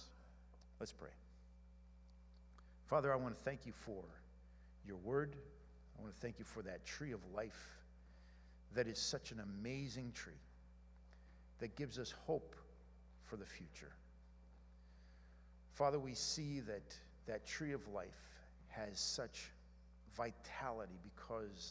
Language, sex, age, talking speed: English, male, 50-69, 125 wpm